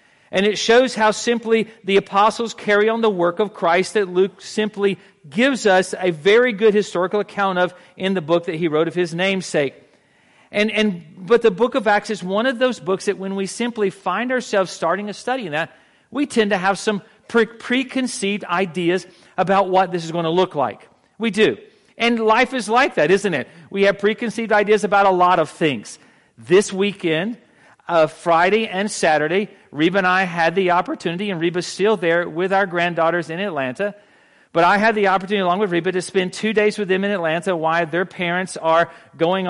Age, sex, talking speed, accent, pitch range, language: 40-59, male, 200 wpm, American, 180-220 Hz, English